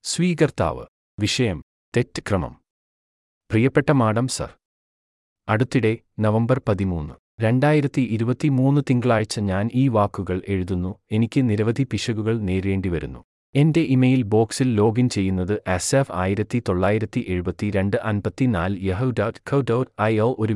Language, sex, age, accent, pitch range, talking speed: Malayalam, male, 30-49, native, 95-125 Hz, 80 wpm